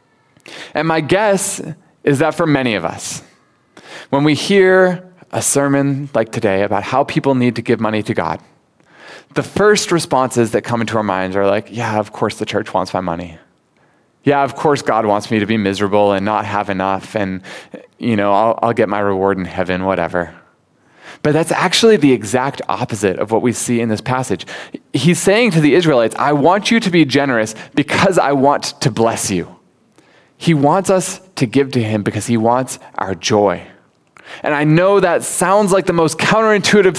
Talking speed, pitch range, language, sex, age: 190 wpm, 110-160 Hz, English, male, 20-39